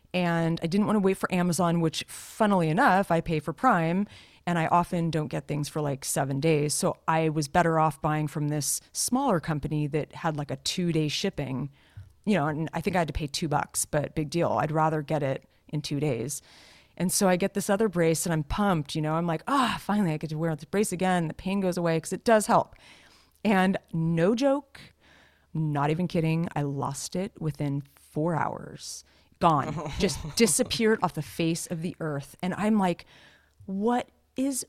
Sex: female